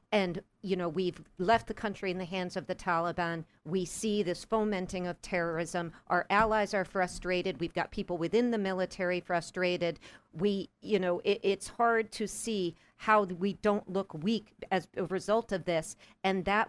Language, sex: English, female